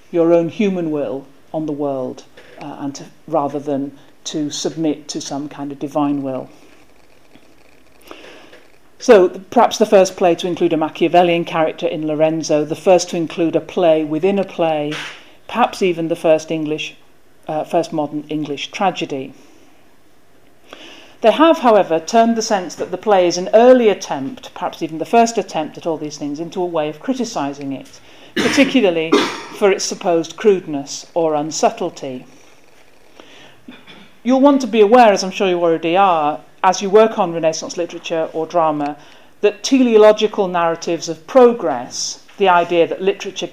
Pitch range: 155-200 Hz